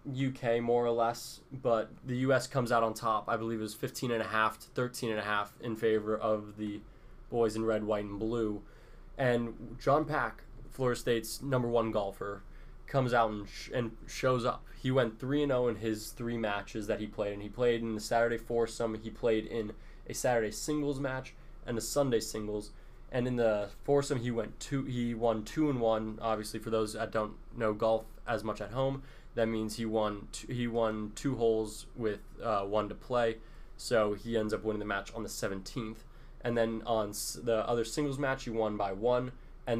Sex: male